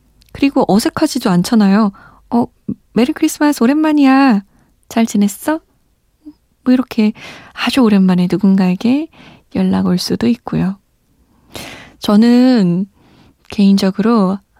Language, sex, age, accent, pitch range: Korean, female, 20-39, native, 195-260 Hz